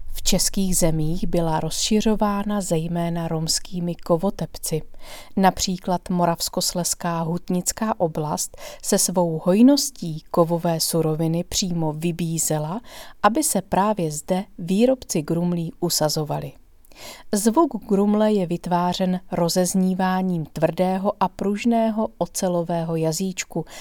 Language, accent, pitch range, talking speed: Czech, native, 170-200 Hz, 90 wpm